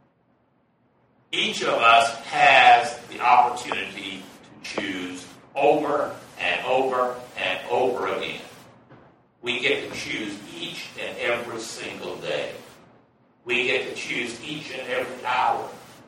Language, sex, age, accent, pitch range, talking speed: English, male, 60-79, American, 115-150 Hz, 115 wpm